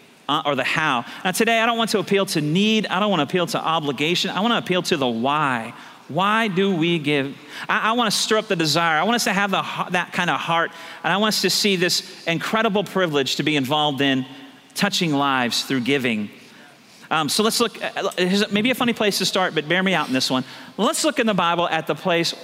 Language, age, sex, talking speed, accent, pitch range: English, 40-59, male, 240 wpm, American, 155-205 Hz